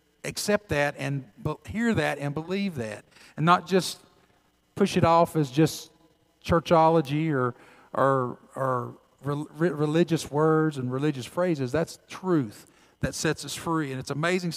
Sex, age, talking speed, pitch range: male, 50-69, 140 wpm, 140-170 Hz